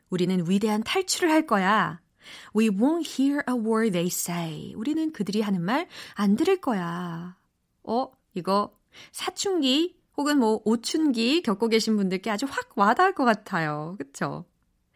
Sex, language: female, Korean